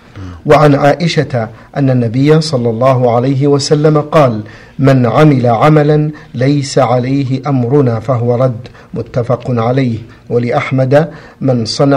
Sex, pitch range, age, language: male, 125-150 Hz, 50-69, Arabic